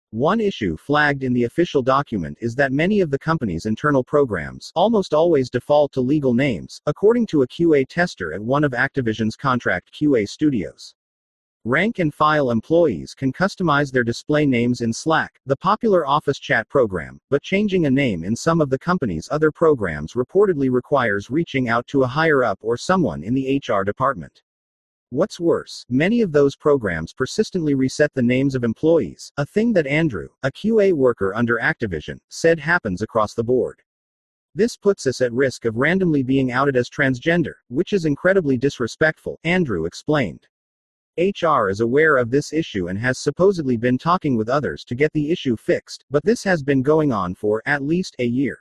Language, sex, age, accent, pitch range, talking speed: English, male, 40-59, American, 120-165 Hz, 175 wpm